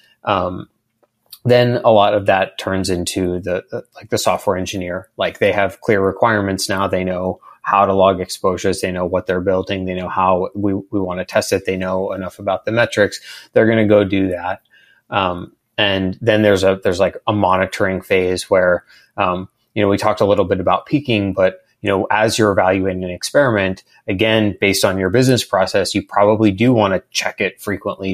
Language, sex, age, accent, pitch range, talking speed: English, male, 20-39, American, 95-105 Hz, 200 wpm